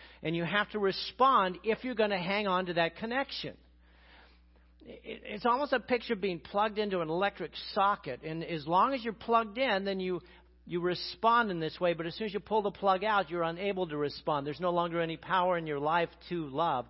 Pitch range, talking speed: 125-175 Hz, 220 wpm